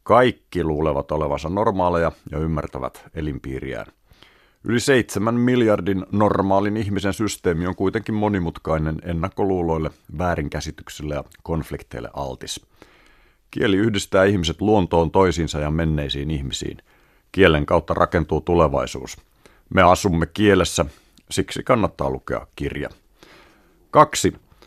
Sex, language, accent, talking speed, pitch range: male, Finnish, native, 100 wpm, 75-100 Hz